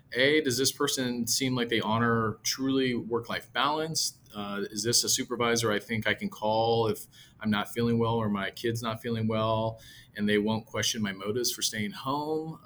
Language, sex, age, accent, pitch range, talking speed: English, male, 30-49, American, 105-120 Hz, 195 wpm